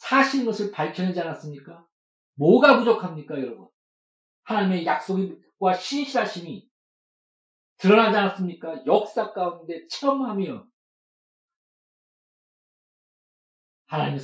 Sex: male